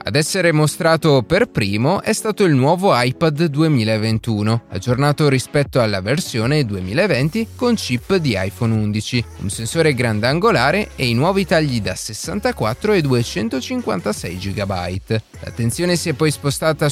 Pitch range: 110-170 Hz